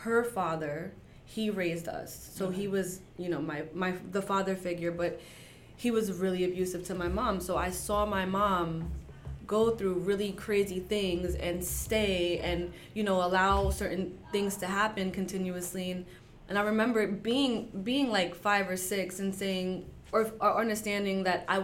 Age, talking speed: 20-39, 165 wpm